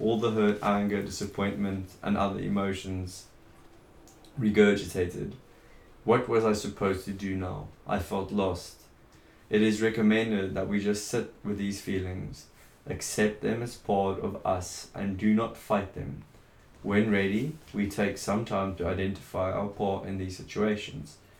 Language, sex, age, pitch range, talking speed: English, male, 20-39, 95-110 Hz, 150 wpm